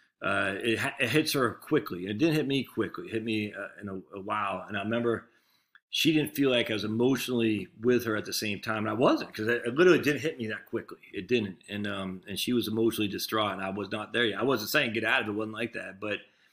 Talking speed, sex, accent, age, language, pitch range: 270 wpm, male, American, 40-59, English, 100-115 Hz